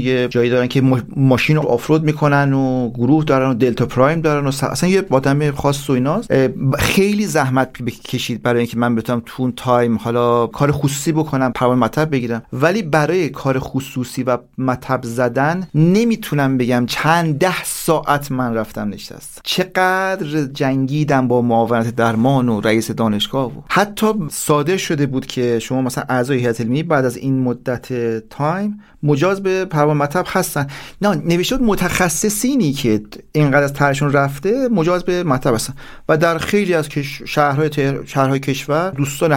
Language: Persian